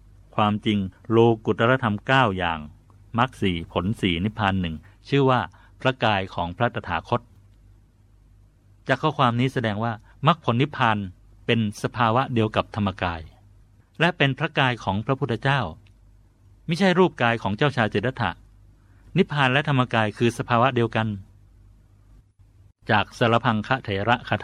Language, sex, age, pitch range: Thai, male, 60-79, 100-120 Hz